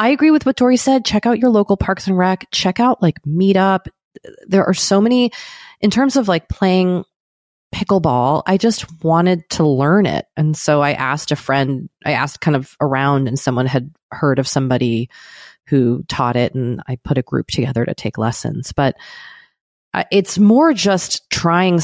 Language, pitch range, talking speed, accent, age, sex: English, 130-175 Hz, 185 wpm, American, 30-49, female